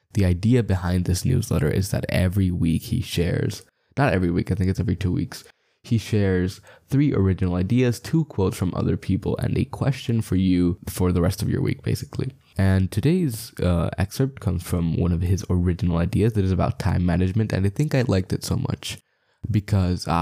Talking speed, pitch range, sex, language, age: 200 wpm, 90-115 Hz, male, English, 10-29